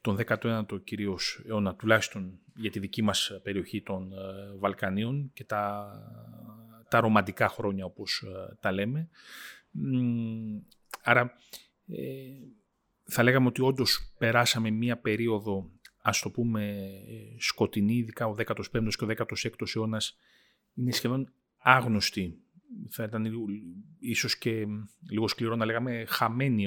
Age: 30-49